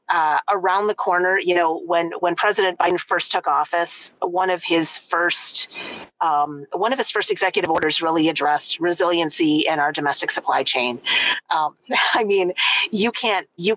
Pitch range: 155-180 Hz